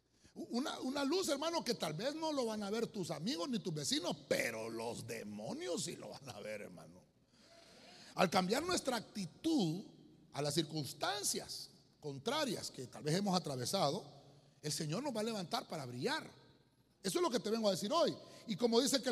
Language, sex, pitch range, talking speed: Spanish, male, 165-260 Hz, 190 wpm